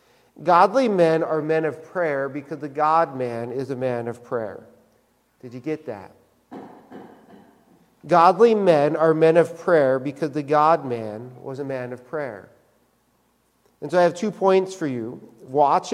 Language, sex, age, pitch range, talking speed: English, male, 50-69, 155-210 Hz, 155 wpm